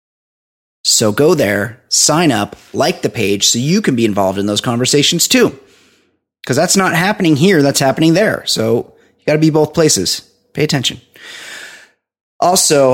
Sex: male